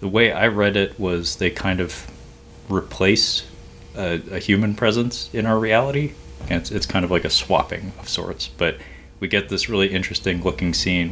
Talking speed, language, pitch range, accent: 190 wpm, English, 85-100 Hz, American